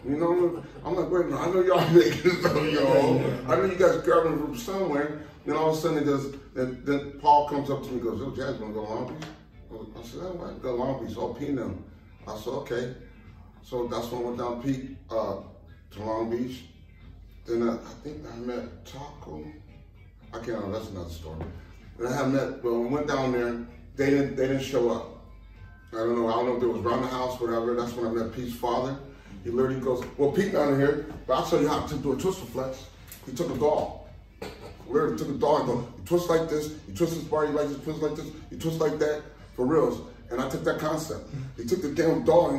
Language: English